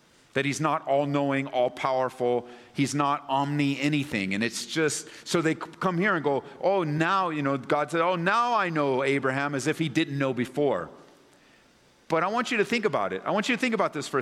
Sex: male